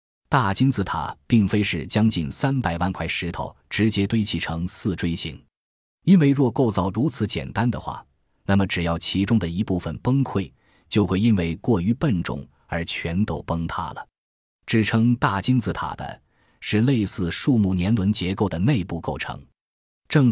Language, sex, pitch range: Chinese, male, 85-115 Hz